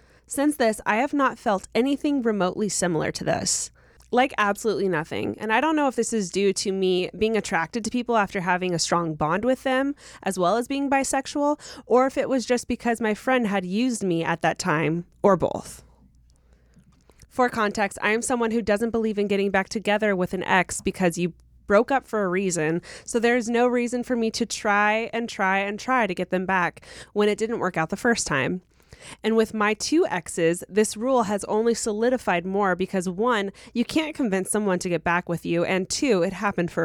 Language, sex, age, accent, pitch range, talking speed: English, female, 20-39, American, 180-235 Hz, 210 wpm